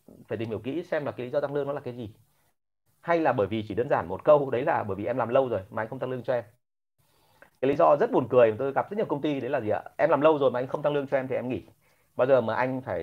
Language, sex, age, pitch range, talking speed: Vietnamese, male, 30-49, 115-145 Hz, 345 wpm